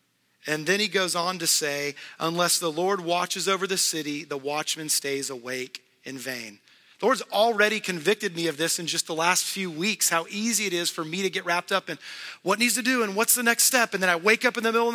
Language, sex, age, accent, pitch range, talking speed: English, male, 30-49, American, 170-230 Hz, 250 wpm